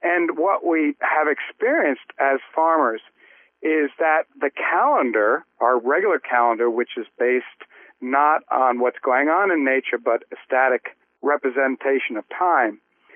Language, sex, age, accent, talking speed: English, male, 50-69, American, 135 wpm